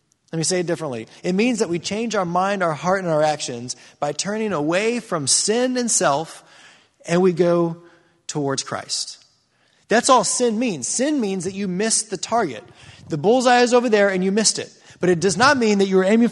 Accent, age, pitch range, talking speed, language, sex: American, 30-49, 165-225 Hz, 215 wpm, English, male